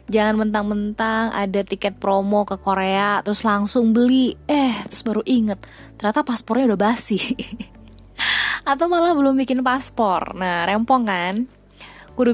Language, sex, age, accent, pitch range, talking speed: Indonesian, female, 20-39, native, 185-240 Hz, 130 wpm